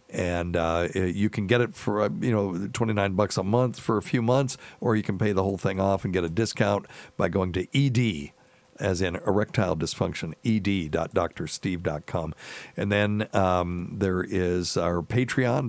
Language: English